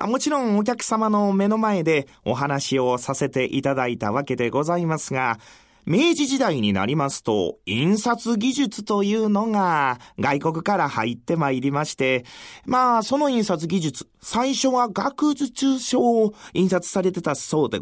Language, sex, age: Japanese, male, 30-49